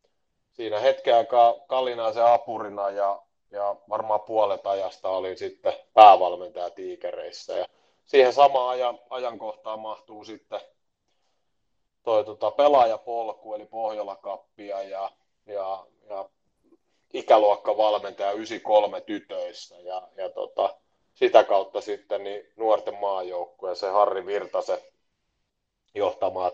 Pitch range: 105-140 Hz